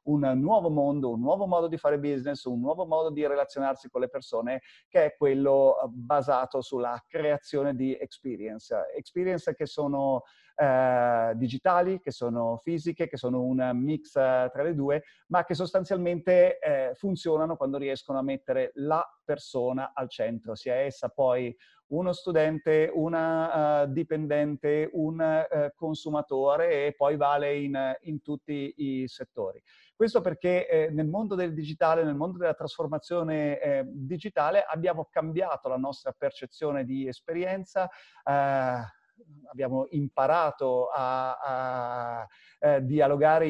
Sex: male